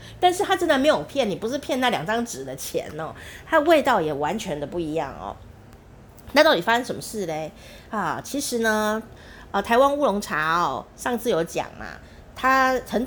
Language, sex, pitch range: Chinese, female, 175-265 Hz